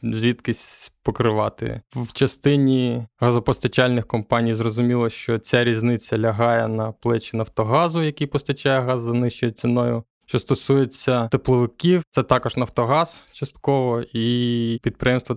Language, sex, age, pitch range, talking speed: Ukrainian, male, 20-39, 115-125 Hz, 115 wpm